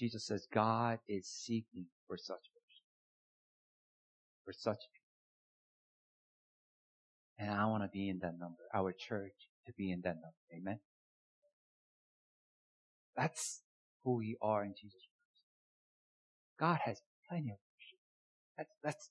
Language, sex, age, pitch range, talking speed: English, male, 50-69, 105-150 Hz, 130 wpm